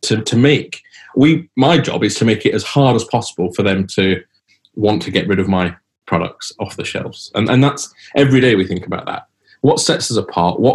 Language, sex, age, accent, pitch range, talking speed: English, male, 30-49, British, 100-130 Hz, 230 wpm